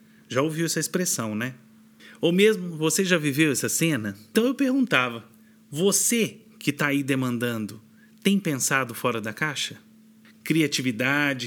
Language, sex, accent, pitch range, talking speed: Portuguese, male, Brazilian, 135-195 Hz, 135 wpm